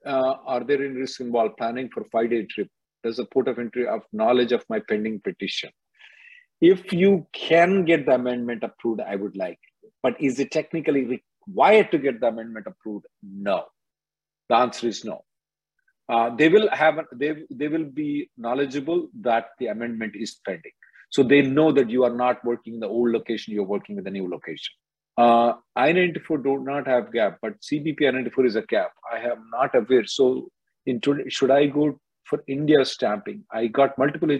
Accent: Indian